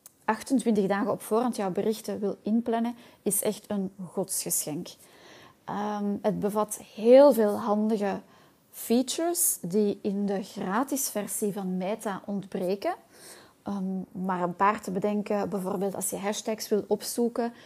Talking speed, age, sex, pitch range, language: 125 wpm, 20-39, female, 195-220 Hz, Dutch